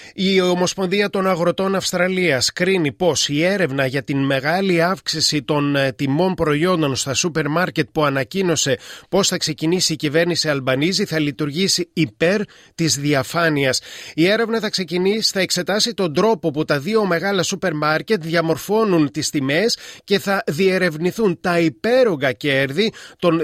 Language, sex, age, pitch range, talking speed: Greek, male, 30-49, 145-180 Hz, 145 wpm